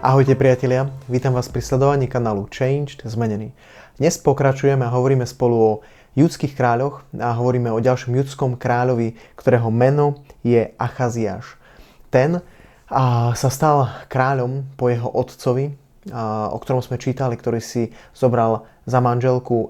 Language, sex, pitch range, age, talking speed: Slovak, male, 120-135 Hz, 20-39, 130 wpm